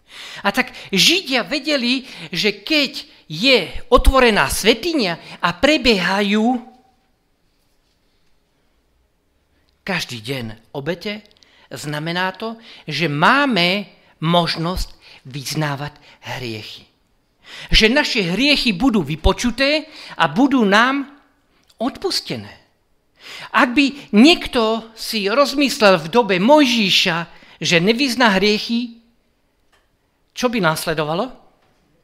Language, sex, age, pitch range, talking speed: Slovak, male, 50-69, 155-250 Hz, 80 wpm